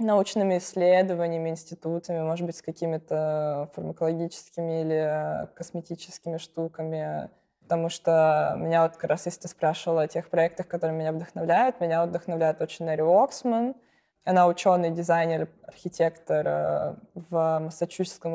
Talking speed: 120 wpm